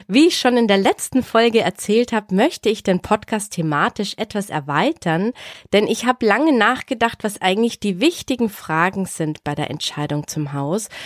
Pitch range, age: 180-240 Hz, 20-39